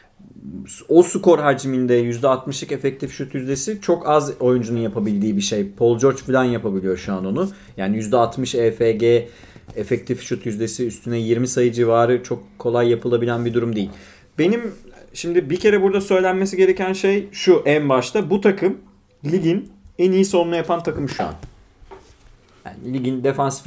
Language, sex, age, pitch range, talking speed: Turkish, male, 30-49, 120-150 Hz, 150 wpm